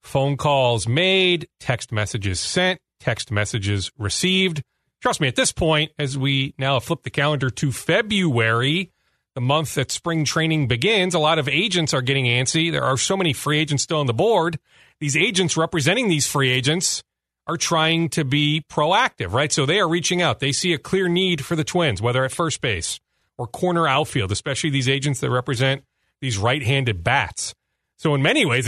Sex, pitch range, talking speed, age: male, 130-170 Hz, 185 wpm, 40-59